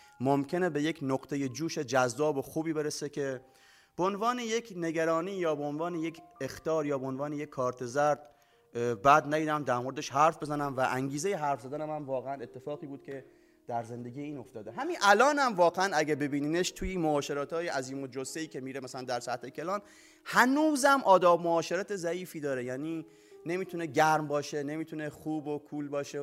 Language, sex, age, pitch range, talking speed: Persian, male, 30-49, 130-175 Hz, 175 wpm